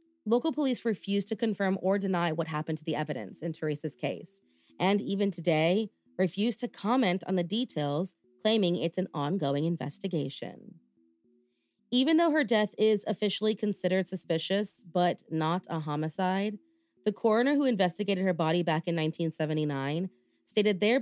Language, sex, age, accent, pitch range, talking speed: English, female, 30-49, American, 165-210 Hz, 150 wpm